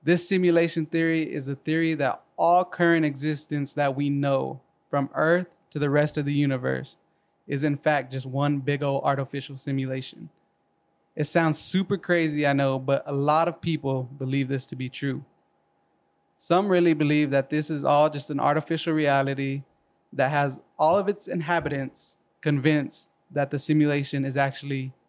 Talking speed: 165 wpm